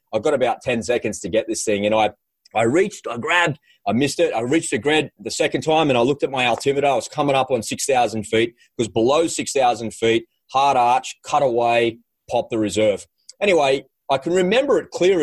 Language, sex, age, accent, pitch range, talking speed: English, male, 30-49, Australian, 115-155 Hz, 220 wpm